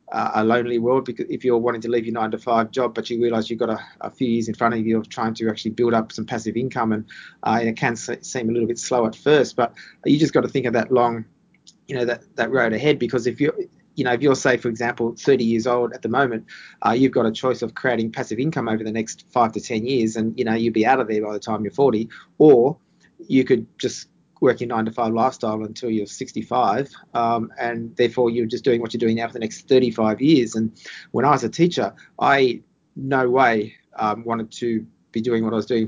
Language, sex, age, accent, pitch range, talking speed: English, male, 30-49, Australian, 115-125 Hz, 255 wpm